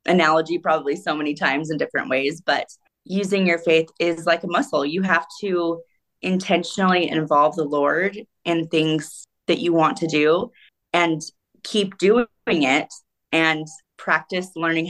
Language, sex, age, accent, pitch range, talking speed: English, female, 20-39, American, 150-170 Hz, 150 wpm